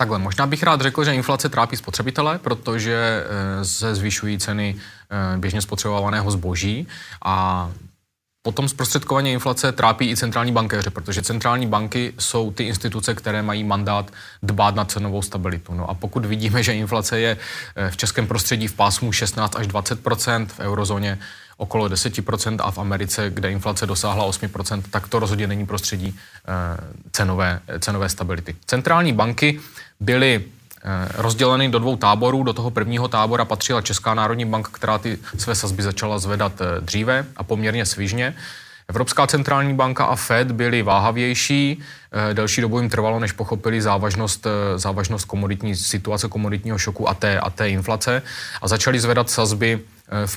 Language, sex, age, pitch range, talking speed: Czech, male, 20-39, 100-120 Hz, 150 wpm